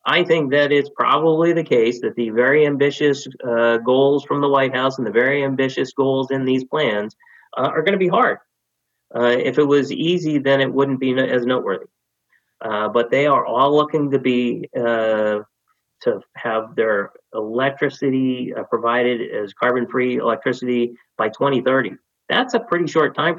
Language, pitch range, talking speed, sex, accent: English, 120-145 Hz, 170 wpm, male, American